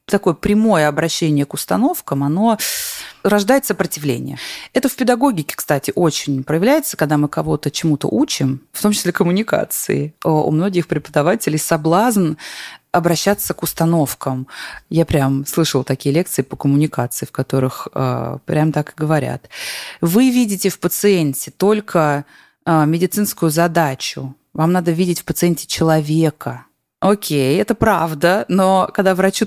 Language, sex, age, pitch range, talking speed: Russian, female, 20-39, 150-200 Hz, 130 wpm